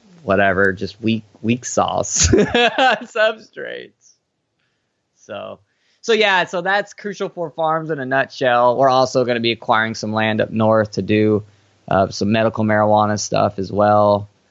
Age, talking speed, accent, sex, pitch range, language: 20-39, 150 wpm, American, male, 105-130 Hz, English